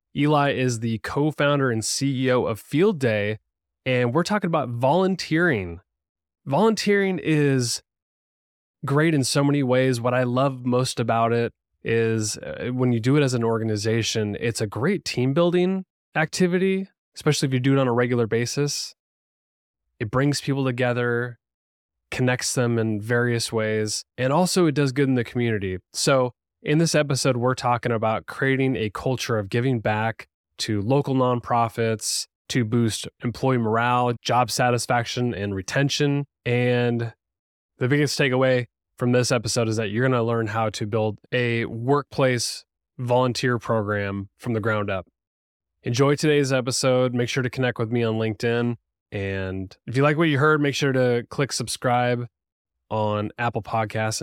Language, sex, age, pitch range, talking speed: English, male, 20-39, 110-135 Hz, 155 wpm